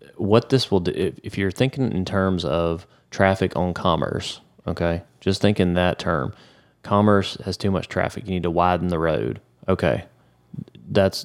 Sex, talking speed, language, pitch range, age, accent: male, 170 wpm, English, 85-95 Hz, 30-49, American